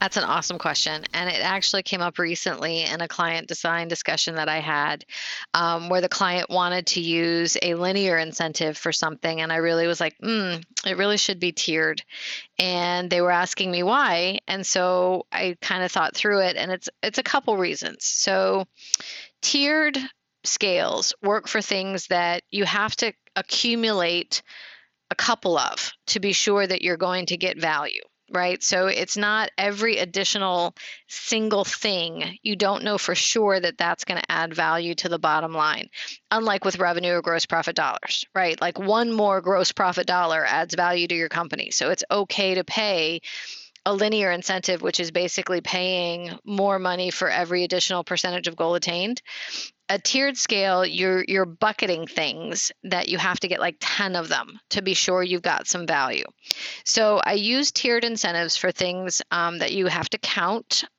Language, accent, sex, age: English, American, female, 30-49